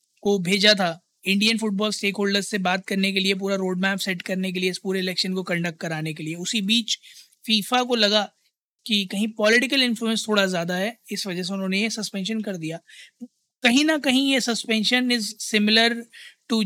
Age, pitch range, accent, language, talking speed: 20-39, 195-225 Hz, native, Hindi, 155 wpm